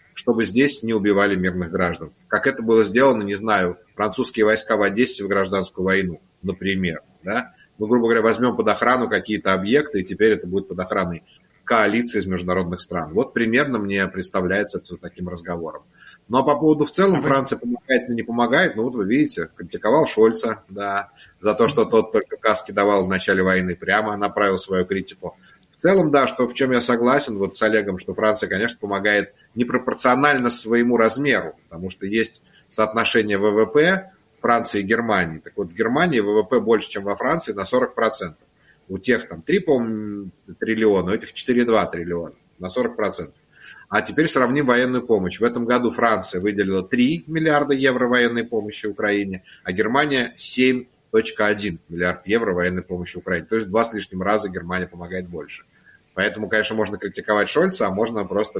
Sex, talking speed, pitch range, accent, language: male, 170 wpm, 95-120 Hz, native, Russian